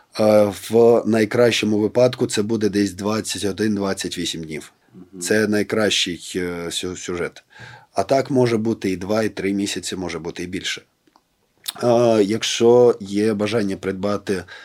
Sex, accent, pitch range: male, native, 95-110 Hz